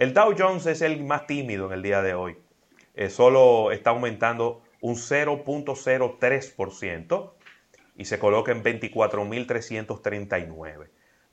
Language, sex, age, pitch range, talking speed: Spanish, male, 30-49, 100-125 Hz, 120 wpm